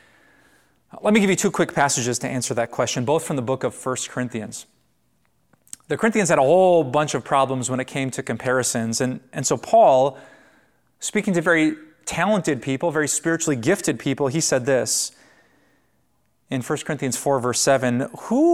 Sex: male